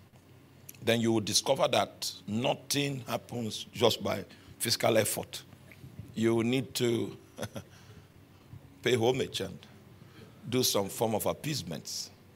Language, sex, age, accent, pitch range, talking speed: English, male, 50-69, Nigerian, 100-125 Hz, 105 wpm